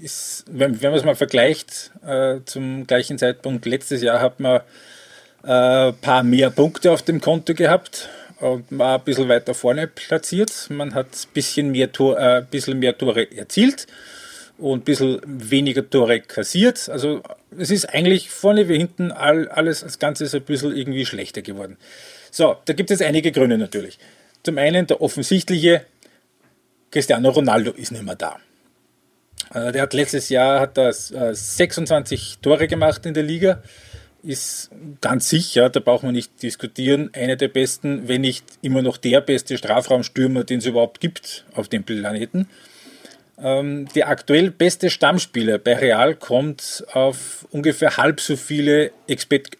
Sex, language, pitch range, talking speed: male, German, 125-155 Hz, 155 wpm